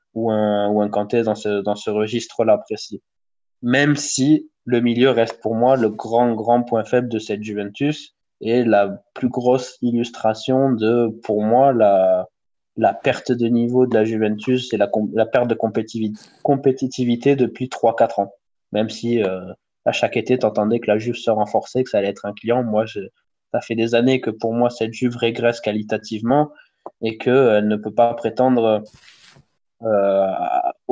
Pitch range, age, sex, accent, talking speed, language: 110-125 Hz, 20-39, male, French, 175 wpm, French